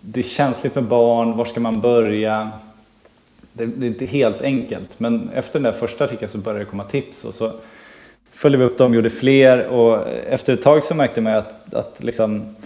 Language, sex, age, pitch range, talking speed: Swedish, male, 20-39, 110-125 Hz, 215 wpm